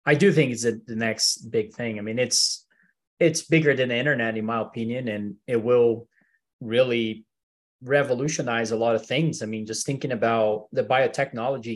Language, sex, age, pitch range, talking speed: English, male, 20-39, 115-155 Hz, 185 wpm